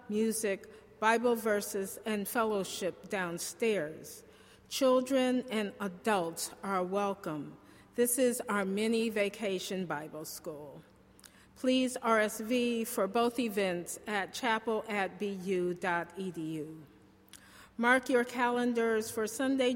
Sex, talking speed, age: female, 90 wpm, 50-69